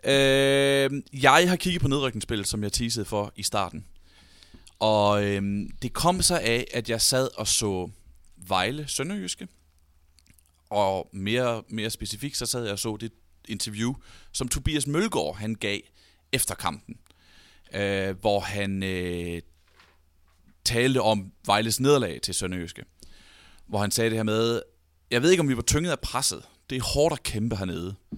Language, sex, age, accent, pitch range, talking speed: Danish, male, 30-49, native, 95-130 Hz, 160 wpm